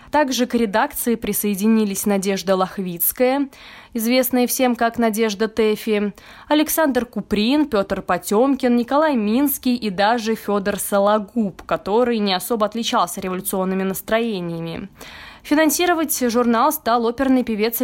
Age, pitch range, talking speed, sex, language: 20-39, 200-245 Hz, 110 wpm, female, Russian